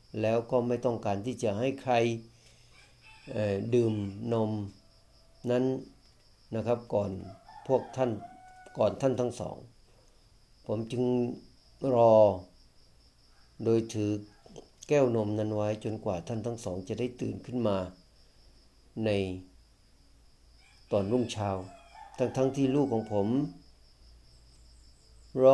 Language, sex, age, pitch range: Thai, male, 60-79, 95-125 Hz